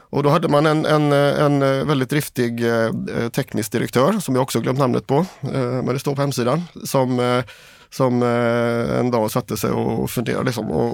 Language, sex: Swedish, male